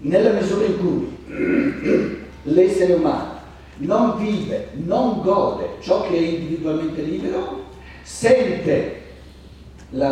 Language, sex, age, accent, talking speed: Italian, male, 60-79, native, 100 wpm